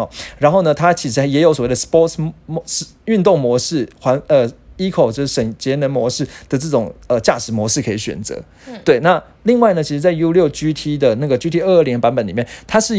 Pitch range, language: 120-175 Hz, Chinese